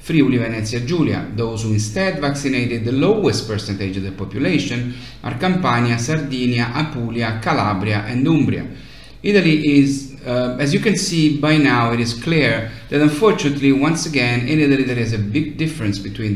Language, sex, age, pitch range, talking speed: English, male, 30-49, 115-145 Hz, 160 wpm